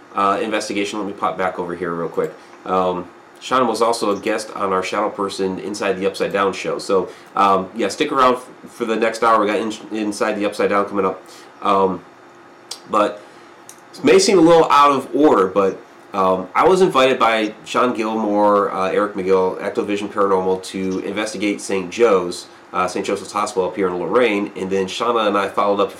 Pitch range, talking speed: 95-110 Hz, 200 wpm